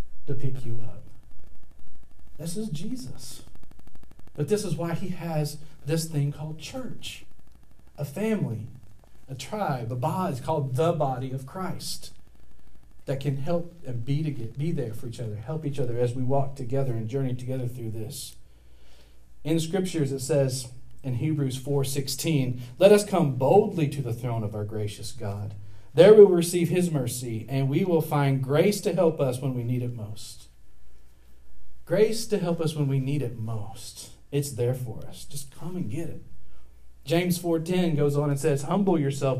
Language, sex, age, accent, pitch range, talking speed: English, male, 50-69, American, 115-155 Hz, 175 wpm